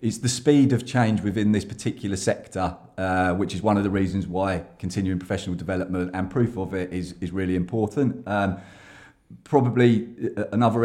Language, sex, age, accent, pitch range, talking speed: English, male, 30-49, British, 95-115 Hz, 170 wpm